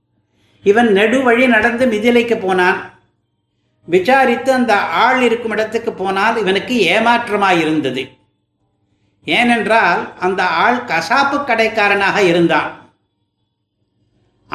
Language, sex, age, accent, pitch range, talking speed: Tamil, male, 60-79, native, 155-235 Hz, 80 wpm